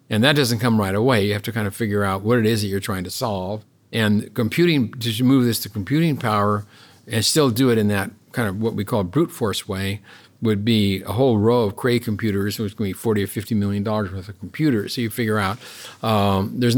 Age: 50-69